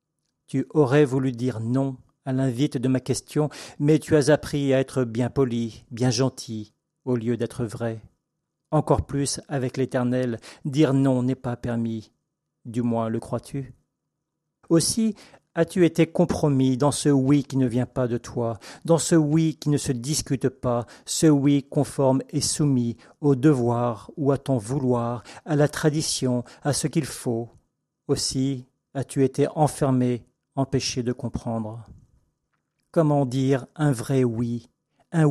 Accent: French